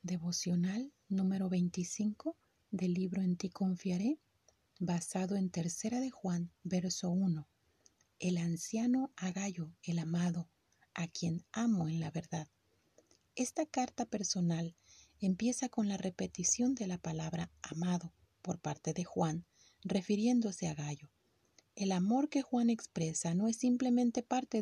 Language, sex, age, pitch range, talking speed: Spanish, female, 40-59, 170-230 Hz, 130 wpm